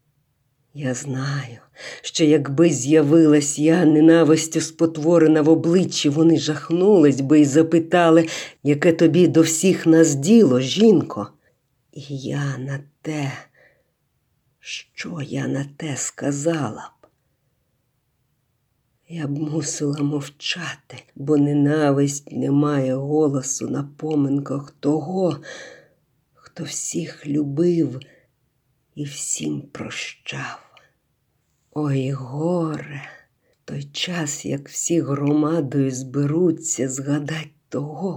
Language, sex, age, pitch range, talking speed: Ukrainian, female, 50-69, 140-165 Hz, 95 wpm